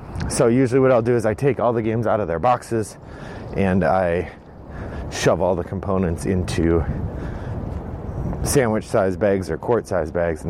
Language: English